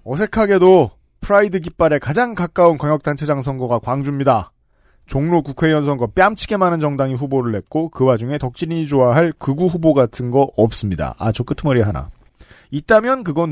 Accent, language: native, Korean